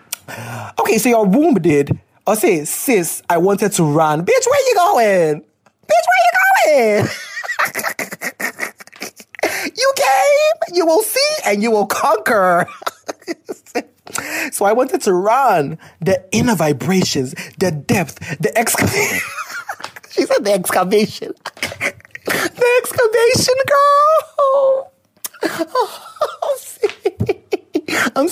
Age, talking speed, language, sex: 30-49, 110 wpm, English, male